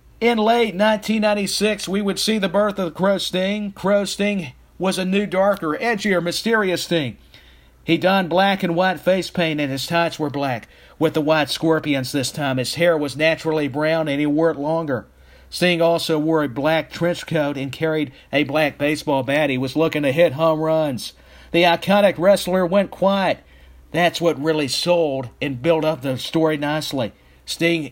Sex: male